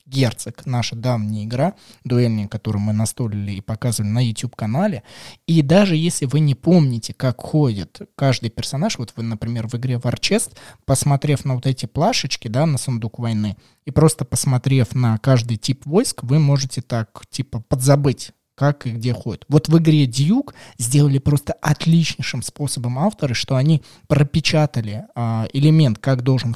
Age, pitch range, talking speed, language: 20-39, 120-145 Hz, 155 wpm, Russian